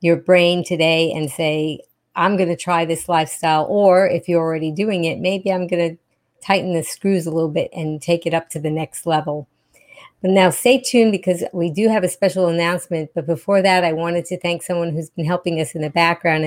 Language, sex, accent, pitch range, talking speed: English, female, American, 165-185 Hz, 220 wpm